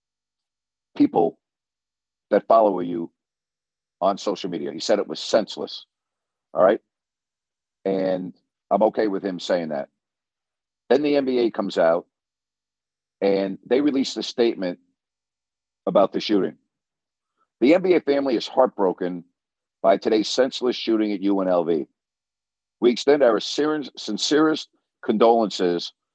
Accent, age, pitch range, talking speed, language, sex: American, 50-69, 100-130 Hz, 115 wpm, English, male